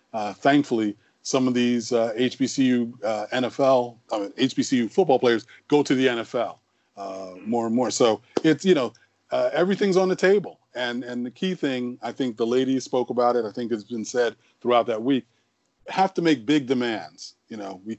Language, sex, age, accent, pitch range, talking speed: English, male, 40-59, American, 115-130 Hz, 195 wpm